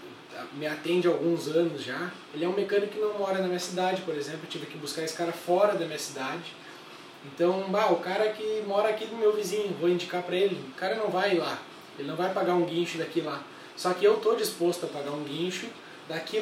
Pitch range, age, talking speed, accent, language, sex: 170-195 Hz, 20-39, 240 wpm, Brazilian, Portuguese, male